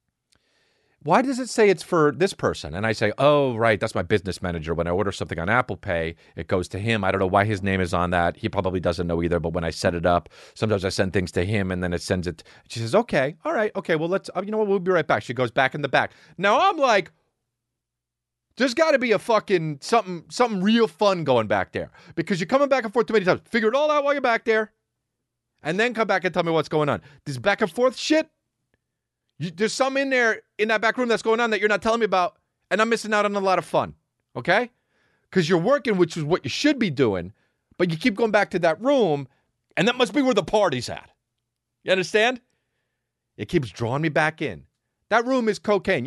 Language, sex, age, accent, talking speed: English, male, 30-49, American, 250 wpm